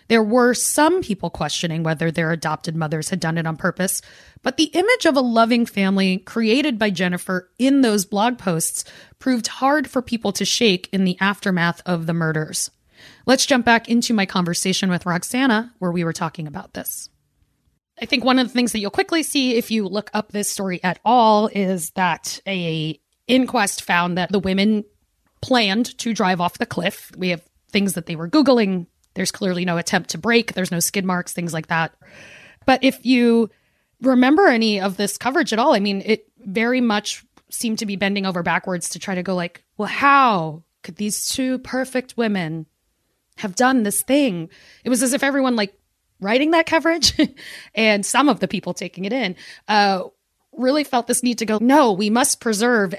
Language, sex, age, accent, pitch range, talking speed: English, female, 30-49, American, 180-245 Hz, 195 wpm